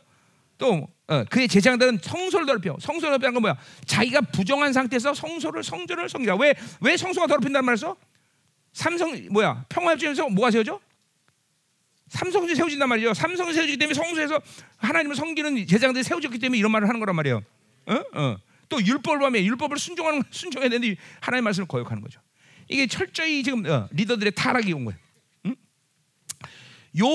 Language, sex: Korean, male